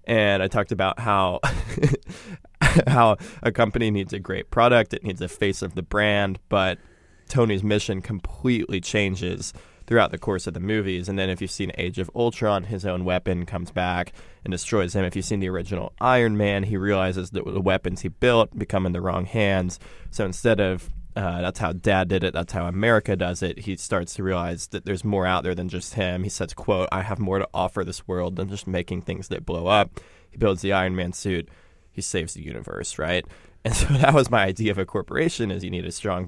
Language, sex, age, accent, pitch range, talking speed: English, male, 20-39, American, 90-105 Hz, 220 wpm